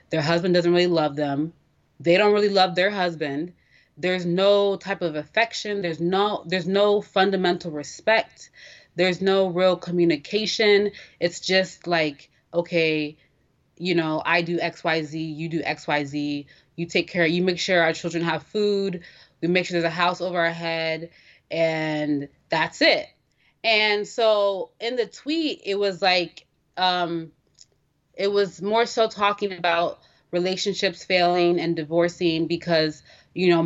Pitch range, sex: 160-185 Hz, female